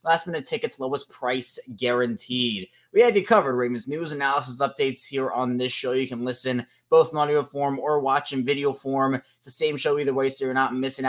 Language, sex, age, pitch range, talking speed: English, male, 20-39, 125-155 Hz, 210 wpm